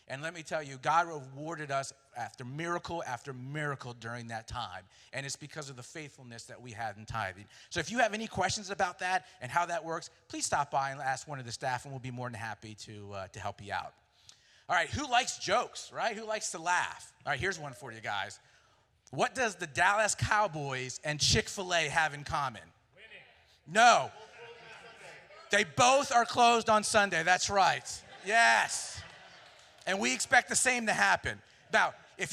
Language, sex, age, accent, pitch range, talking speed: English, male, 40-59, American, 135-200 Hz, 195 wpm